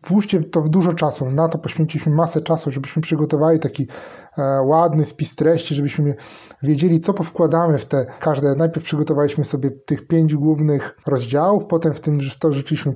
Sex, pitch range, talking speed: male, 150-175 Hz, 165 wpm